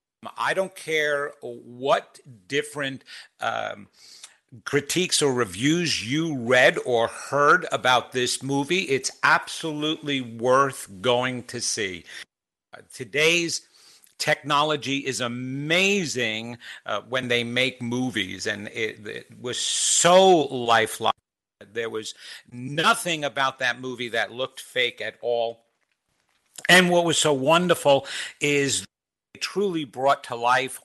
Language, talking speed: English, 115 wpm